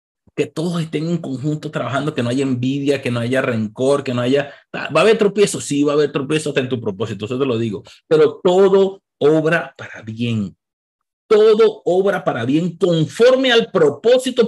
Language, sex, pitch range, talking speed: Spanish, male, 140-205 Hz, 185 wpm